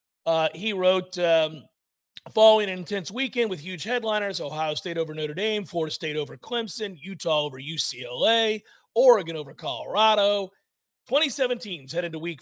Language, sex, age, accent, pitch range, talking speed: English, male, 40-59, American, 160-215 Hz, 150 wpm